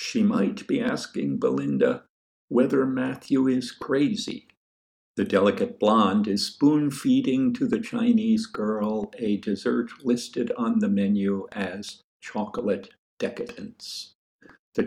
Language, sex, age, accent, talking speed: English, male, 60-79, American, 115 wpm